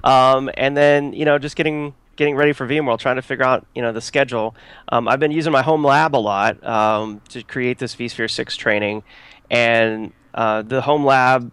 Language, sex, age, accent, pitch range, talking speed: English, male, 30-49, American, 110-130 Hz, 210 wpm